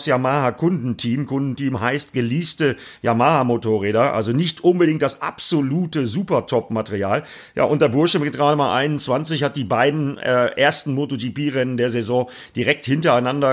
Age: 40-59